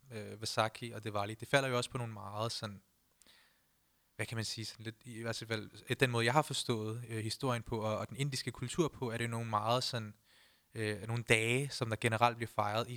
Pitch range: 110-130 Hz